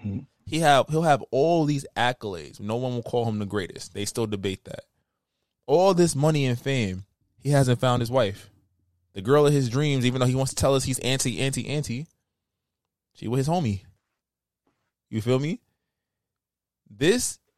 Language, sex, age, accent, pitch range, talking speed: English, male, 20-39, American, 110-145 Hz, 185 wpm